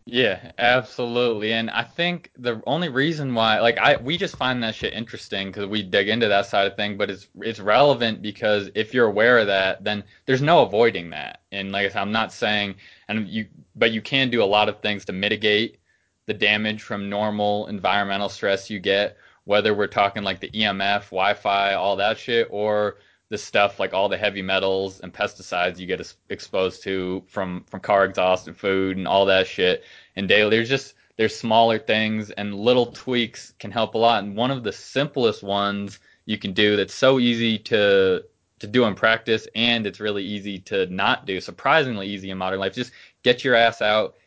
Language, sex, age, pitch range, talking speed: English, male, 20-39, 100-115 Hz, 200 wpm